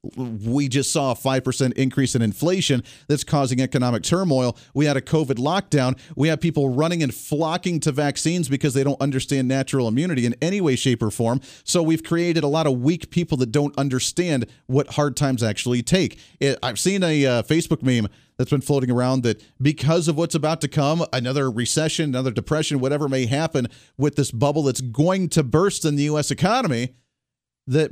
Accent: American